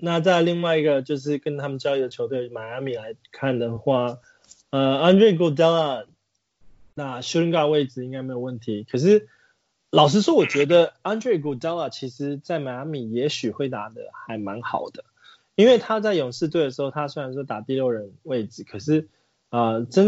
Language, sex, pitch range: Chinese, male, 120-150 Hz